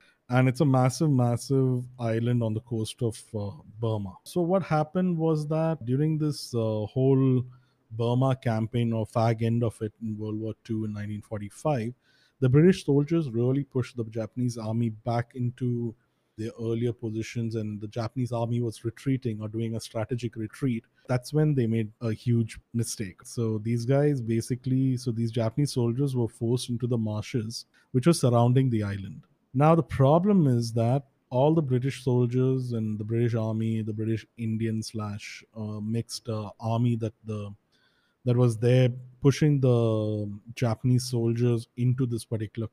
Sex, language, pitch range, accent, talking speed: male, English, 110-130 Hz, Indian, 165 wpm